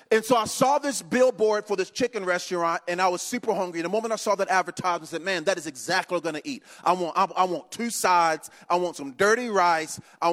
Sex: male